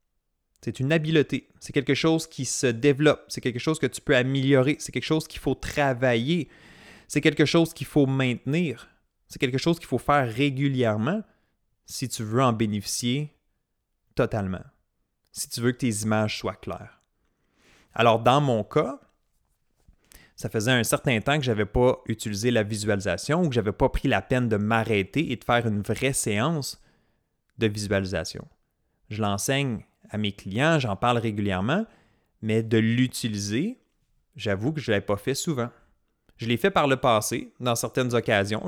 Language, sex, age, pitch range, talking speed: French, male, 30-49, 110-135 Hz, 170 wpm